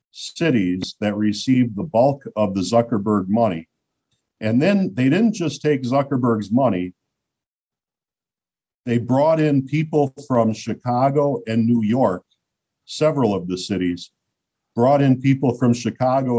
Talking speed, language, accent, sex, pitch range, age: 130 wpm, English, American, male, 100-135 Hz, 50-69